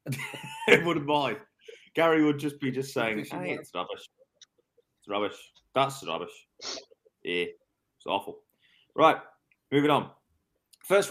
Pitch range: 115-175 Hz